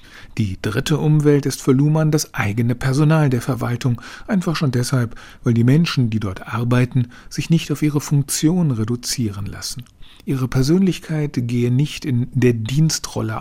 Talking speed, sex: 150 wpm, male